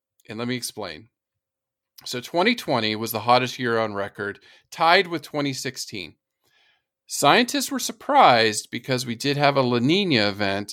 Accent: American